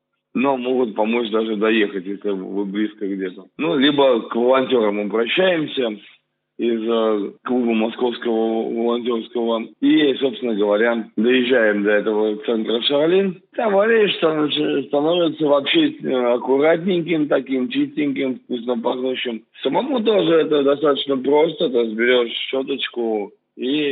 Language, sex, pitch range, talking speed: Russian, male, 115-145 Hz, 115 wpm